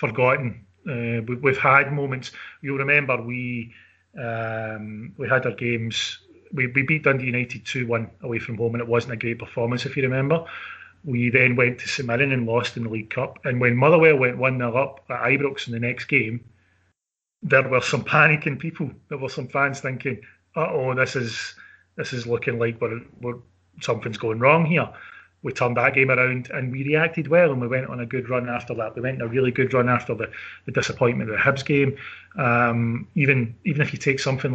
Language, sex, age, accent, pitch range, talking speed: English, male, 30-49, British, 115-135 Hz, 210 wpm